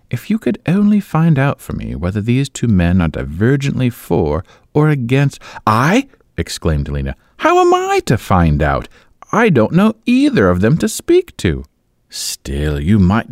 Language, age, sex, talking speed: English, 50-69, male, 170 wpm